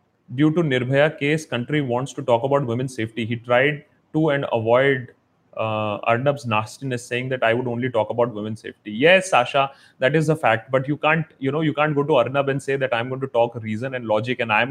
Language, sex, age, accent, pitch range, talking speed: Hindi, male, 30-49, native, 115-150 Hz, 235 wpm